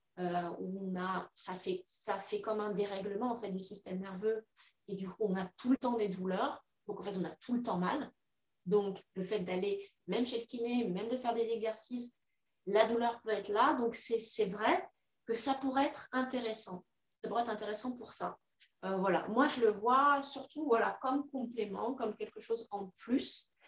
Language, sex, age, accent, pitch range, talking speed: French, female, 30-49, French, 190-230 Hz, 210 wpm